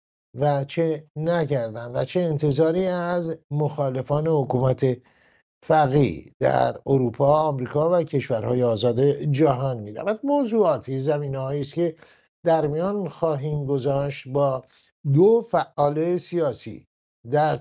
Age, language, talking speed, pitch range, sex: 60-79, English, 105 wpm, 125-155 Hz, male